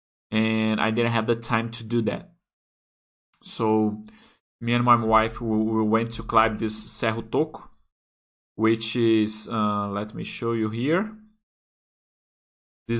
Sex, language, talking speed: male, Portuguese, 135 wpm